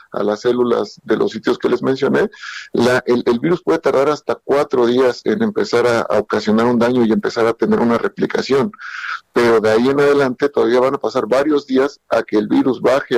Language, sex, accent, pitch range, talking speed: Spanish, male, Mexican, 120-150 Hz, 210 wpm